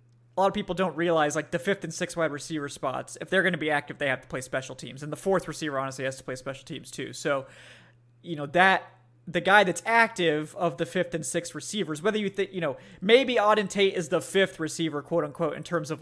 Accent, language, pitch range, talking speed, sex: American, English, 145-180 Hz, 255 wpm, male